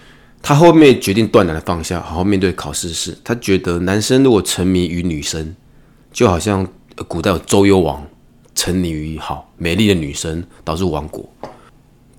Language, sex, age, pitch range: Chinese, male, 20-39, 85-115 Hz